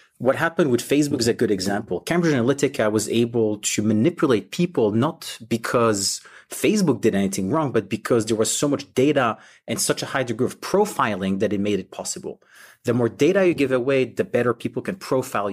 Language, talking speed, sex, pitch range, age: English, 195 wpm, male, 105-130 Hz, 30-49